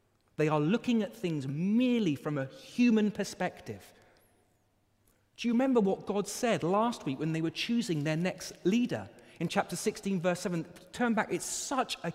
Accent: British